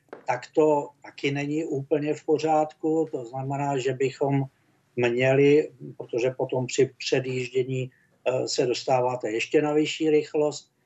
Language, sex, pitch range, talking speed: Czech, male, 130-150 Hz, 120 wpm